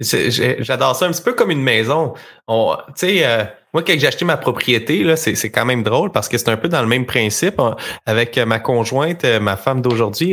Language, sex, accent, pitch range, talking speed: French, male, Canadian, 120-160 Hz, 245 wpm